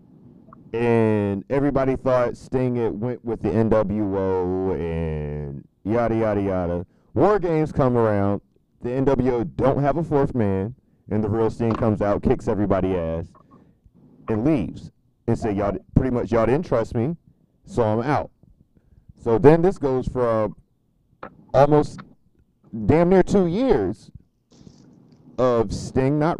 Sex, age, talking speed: male, 40-59, 135 wpm